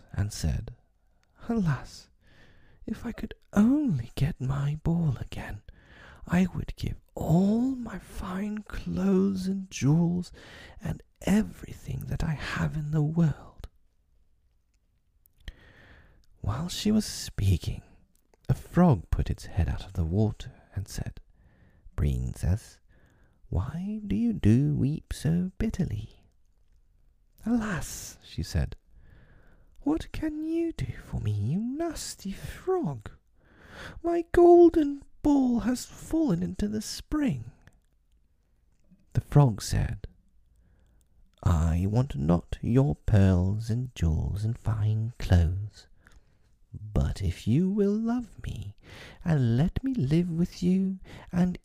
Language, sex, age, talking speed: English, male, 40-59, 115 wpm